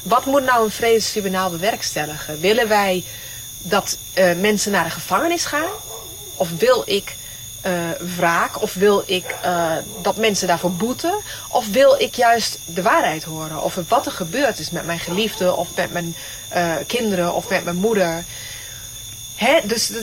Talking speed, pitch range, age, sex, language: 160 wpm, 140-210 Hz, 30-49, female, Dutch